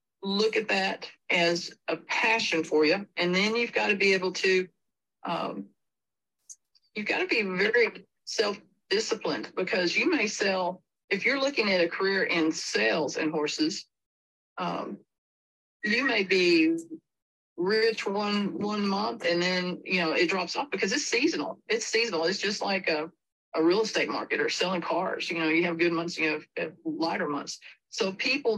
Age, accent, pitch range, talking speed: 40-59, American, 165-225 Hz, 170 wpm